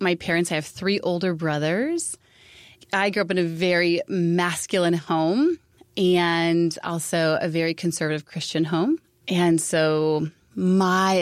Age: 20-39